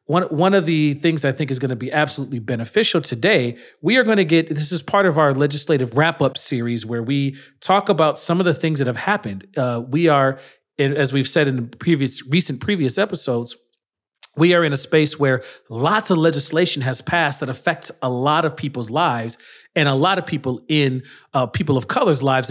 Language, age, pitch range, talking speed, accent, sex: English, 40-59, 130-165 Hz, 210 wpm, American, male